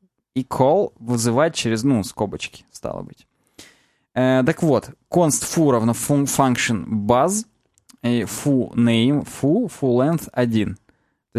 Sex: male